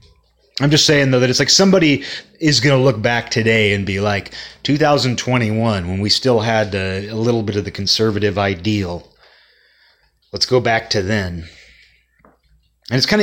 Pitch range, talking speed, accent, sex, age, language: 95-130 Hz, 170 wpm, American, male, 30-49, English